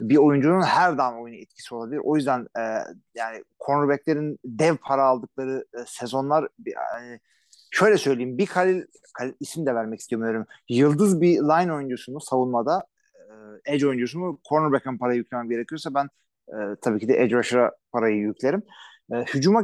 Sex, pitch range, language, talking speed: male, 125-160 Hz, Turkish, 155 wpm